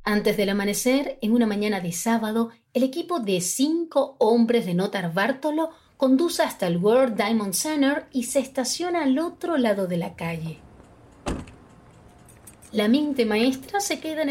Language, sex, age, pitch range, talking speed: Spanish, female, 30-49, 170-275 Hz, 155 wpm